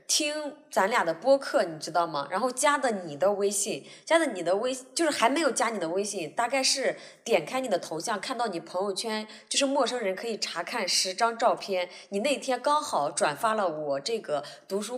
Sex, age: female, 20-39